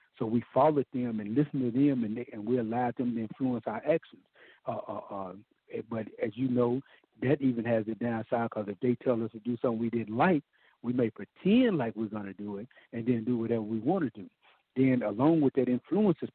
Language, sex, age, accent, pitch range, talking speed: English, male, 60-79, American, 115-135 Hz, 230 wpm